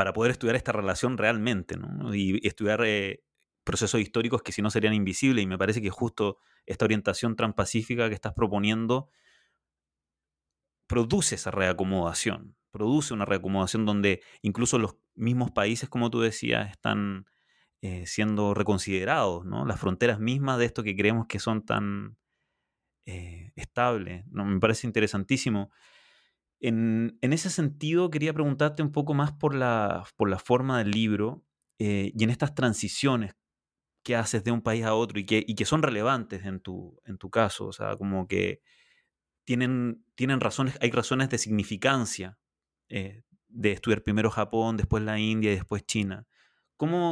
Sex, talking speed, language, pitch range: male, 160 wpm, Spanish, 100-125 Hz